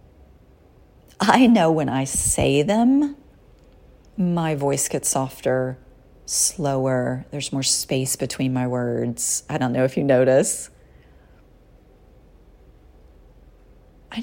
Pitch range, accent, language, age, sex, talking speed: 120-155 Hz, American, English, 30-49, female, 100 wpm